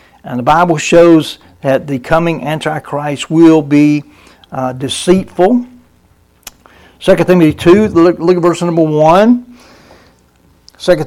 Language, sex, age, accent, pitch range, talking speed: English, male, 60-79, American, 140-180 Hz, 120 wpm